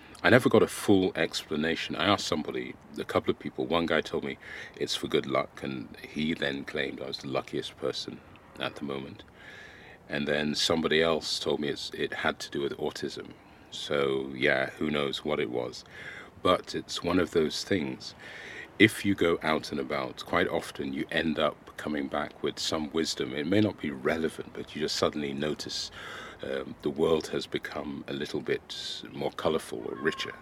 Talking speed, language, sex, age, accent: 190 wpm, English, male, 40-59, British